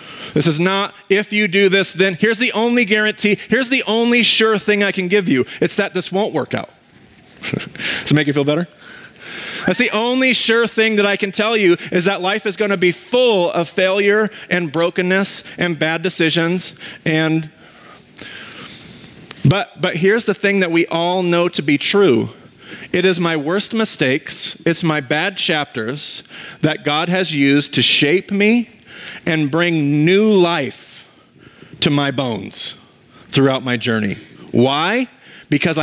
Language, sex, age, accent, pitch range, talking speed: English, male, 40-59, American, 155-205 Hz, 165 wpm